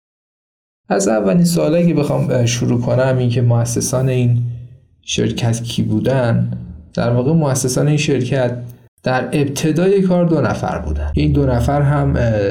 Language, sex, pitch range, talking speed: Persian, male, 120-155 Hz, 135 wpm